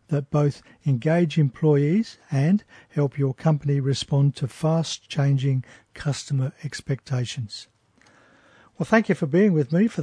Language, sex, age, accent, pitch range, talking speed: English, male, 50-69, Australian, 135-165 Hz, 125 wpm